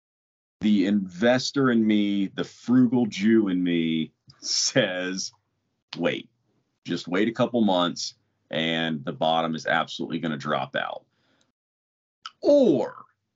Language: English